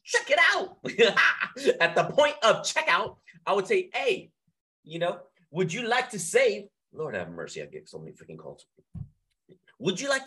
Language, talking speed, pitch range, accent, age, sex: English, 180 wpm, 160-220 Hz, American, 30-49, male